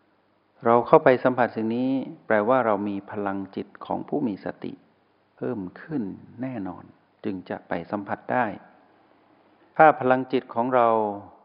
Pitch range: 95-120 Hz